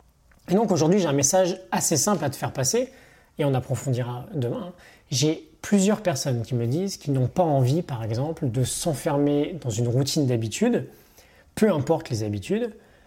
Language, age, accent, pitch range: French, 20-39, French, 130-175 Hz